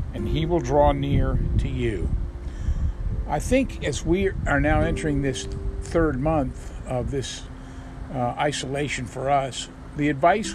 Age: 50-69